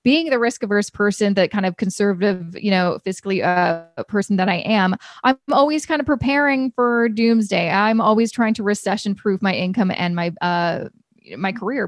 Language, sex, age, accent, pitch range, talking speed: English, female, 20-39, American, 190-230 Hz, 185 wpm